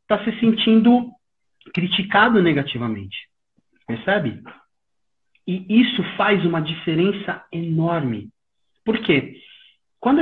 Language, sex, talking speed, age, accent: Portuguese, male, 80 wpm, 30-49, Brazilian